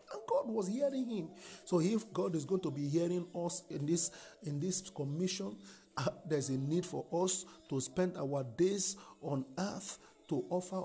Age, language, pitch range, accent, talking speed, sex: 50-69, English, 155-195 Hz, Nigerian, 185 wpm, male